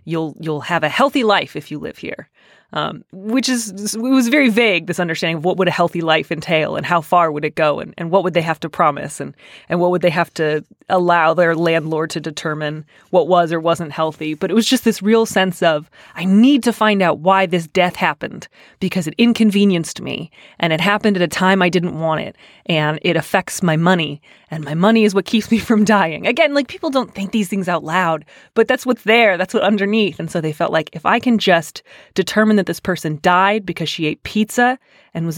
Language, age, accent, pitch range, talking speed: English, 30-49, American, 165-215 Hz, 235 wpm